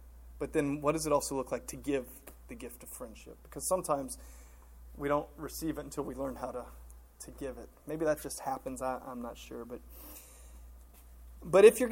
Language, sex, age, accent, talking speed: English, male, 30-49, American, 200 wpm